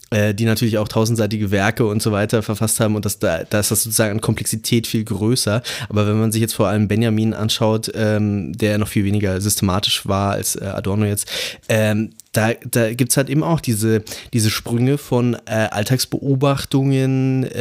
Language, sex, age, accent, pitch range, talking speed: German, male, 20-39, German, 110-125 Hz, 195 wpm